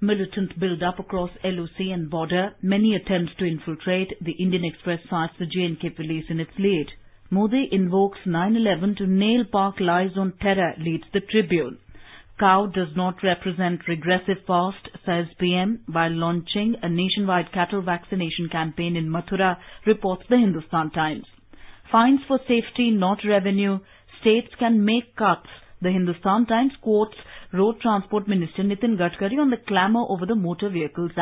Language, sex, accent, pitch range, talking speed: English, female, Indian, 175-220 Hz, 150 wpm